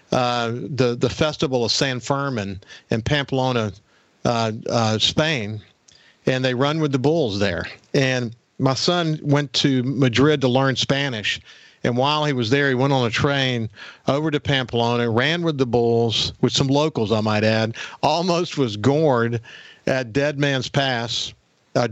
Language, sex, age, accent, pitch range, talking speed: English, male, 50-69, American, 120-145 Hz, 165 wpm